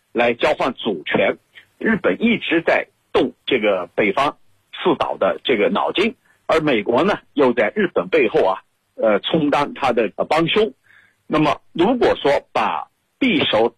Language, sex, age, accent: Chinese, male, 50-69, native